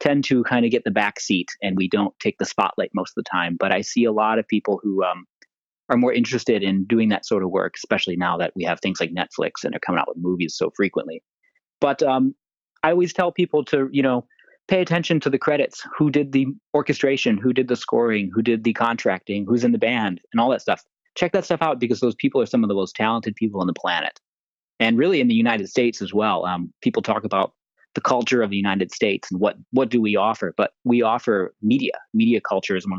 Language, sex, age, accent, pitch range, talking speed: English, male, 30-49, American, 95-135 Hz, 245 wpm